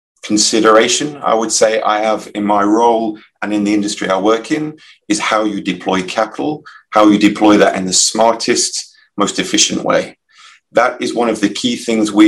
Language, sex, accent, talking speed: English, male, British, 190 wpm